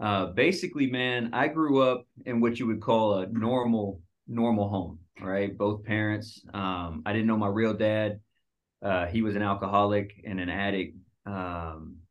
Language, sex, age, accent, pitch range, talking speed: English, male, 30-49, American, 95-110 Hz, 170 wpm